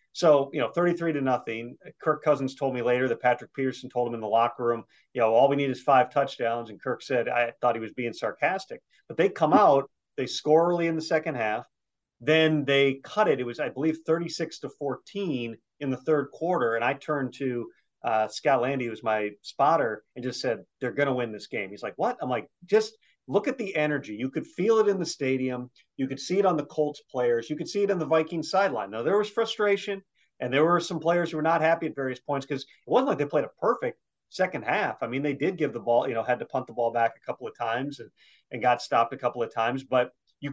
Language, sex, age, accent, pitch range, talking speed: English, male, 40-59, American, 120-160 Hz, 255 wpm